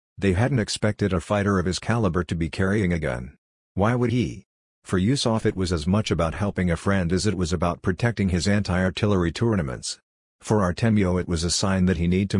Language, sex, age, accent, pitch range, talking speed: English, male, 50-69, American, 90-105 Hz, 215 wpm